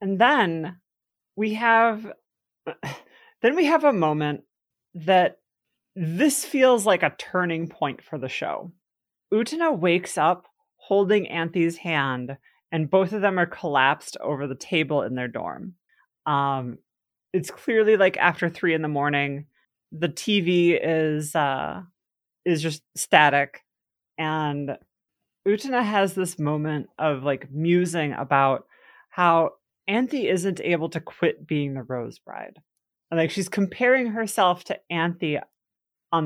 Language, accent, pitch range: English, American, 150-200 Hz